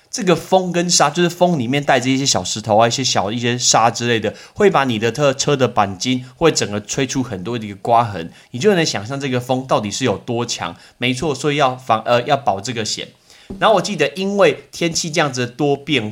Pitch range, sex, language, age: 115-160 Hz, male, Chinese, 20-39